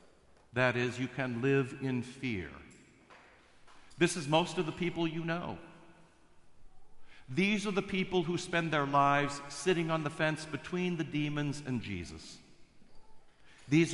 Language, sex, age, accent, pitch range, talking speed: English, male, 50-69, American, 115-155 Hz, 140 wpm